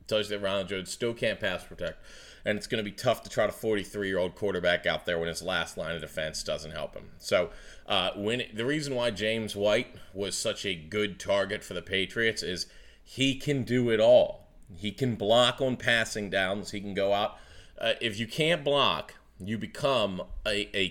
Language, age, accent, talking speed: English, 40-59, American, 205 wpm